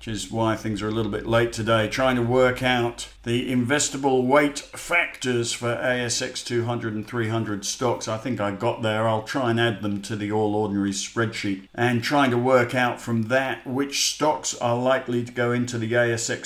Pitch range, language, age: 110-130 Hz, English, 50-69